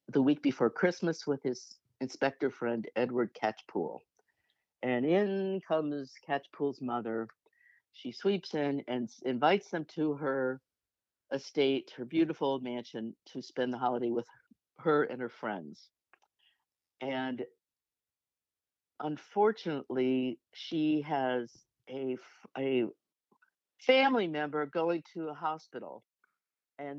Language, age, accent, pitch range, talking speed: English, 60-79, American, 125-160 Hz, 110 wpm